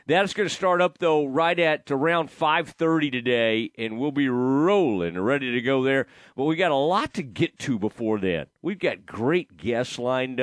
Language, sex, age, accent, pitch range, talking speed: English, male, 40-59, American, 120-155 Hz, 195 wpm